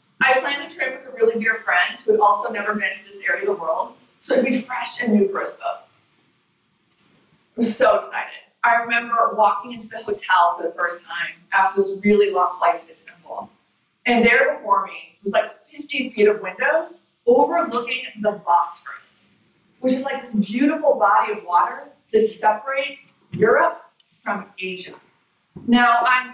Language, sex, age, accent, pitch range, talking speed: English, female, 30-49, American, 205-265 Hz, 180 wpm